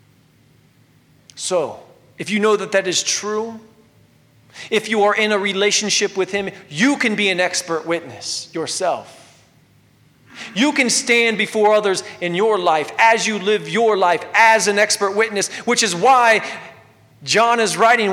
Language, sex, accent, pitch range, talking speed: English, male, American, 170-225 Hz, 150 wpm